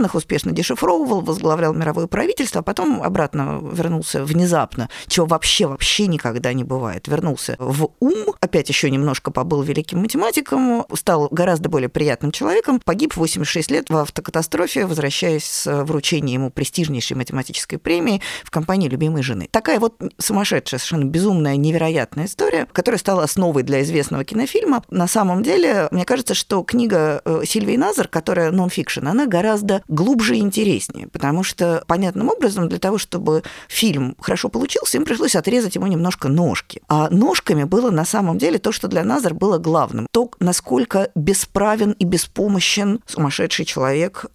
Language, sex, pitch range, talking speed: Russian, female, 155-200 Hz, 145 wpm